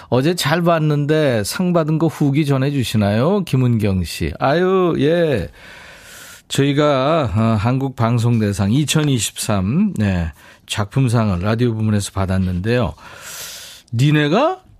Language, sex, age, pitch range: Korean, male, 40-59, 110-155 Hz